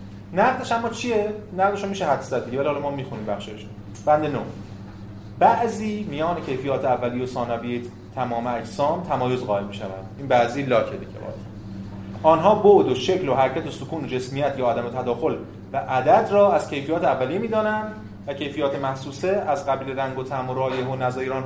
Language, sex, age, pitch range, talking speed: Persian, male, 30-49, 105-155 Hz, 175 wpm